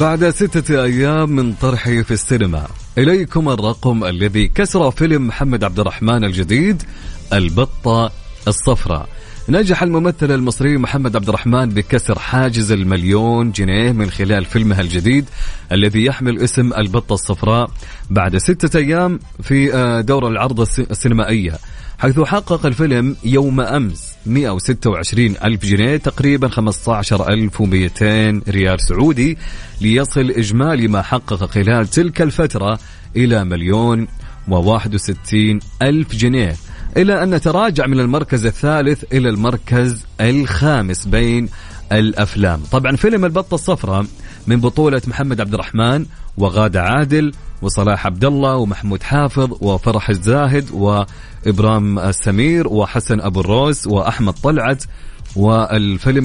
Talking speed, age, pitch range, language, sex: 115 wpm, 30-49, 100-135 Hz, English, male